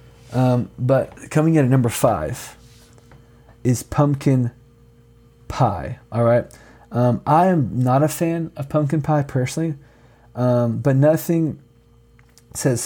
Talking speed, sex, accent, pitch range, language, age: 120 wpm, male, American, 120-140 Hz, English, 20-39